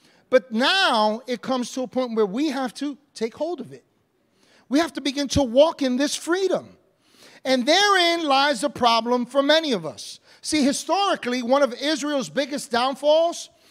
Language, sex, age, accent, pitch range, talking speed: English, male, 40-59, American, 220-280 Hz, 175 wpm